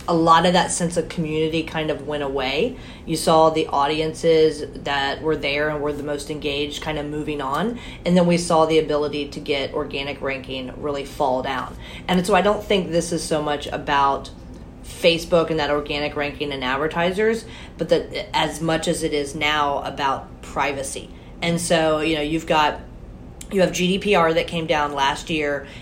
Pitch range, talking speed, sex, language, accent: 145-170 Hz, 190 wpm, female, English, American